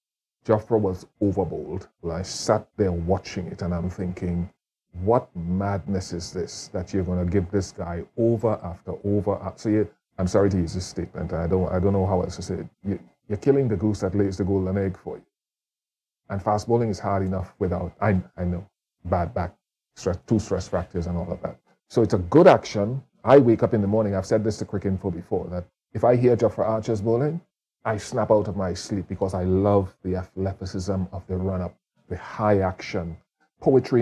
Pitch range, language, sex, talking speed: 90-105 Hz, English, male, 210 wpm